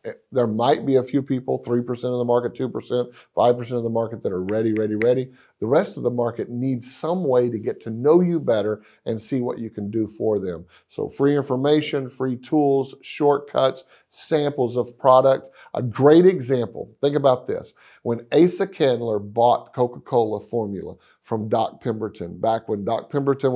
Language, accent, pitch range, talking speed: English, American, 115-145 Hz, 180 wpm